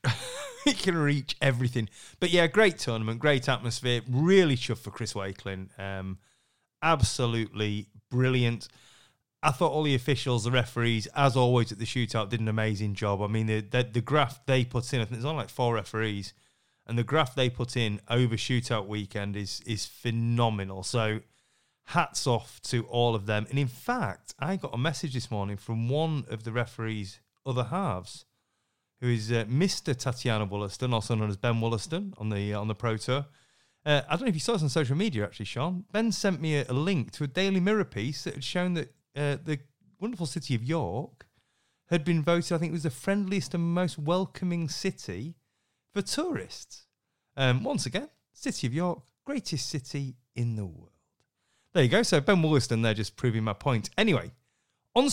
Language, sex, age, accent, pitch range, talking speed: English, male, 30-49, British, 115-160 Hz, 190 wpm